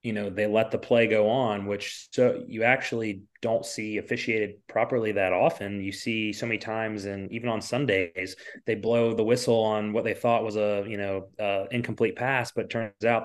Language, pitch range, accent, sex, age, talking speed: English, 105-135 Hz, American, male, 30-49, 210 wpm